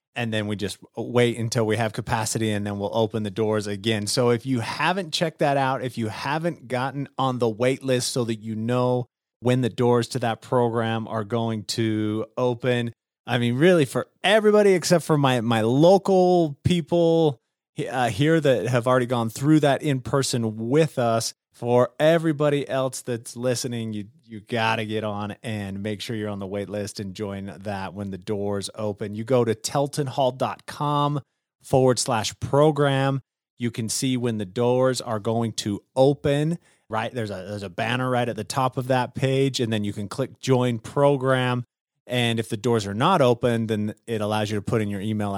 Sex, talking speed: male, 195 wpm